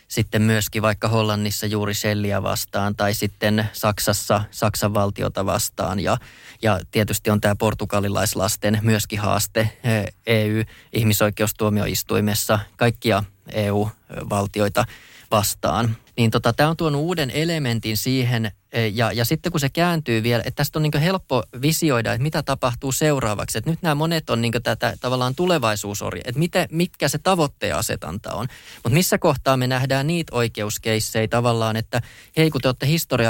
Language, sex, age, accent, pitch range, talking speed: Finnish, male, 20-39, native, 105-130 Hz, 145 wpm